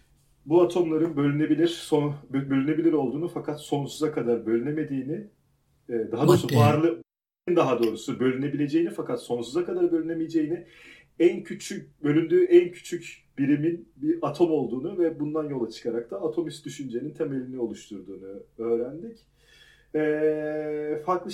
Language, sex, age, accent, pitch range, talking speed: Turkish, male, 40-59, native, 120-160 Hz, 115 wpm